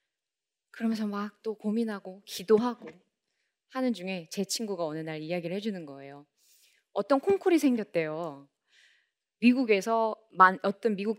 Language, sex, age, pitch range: Korean, female, 20-39, 175-265 Hz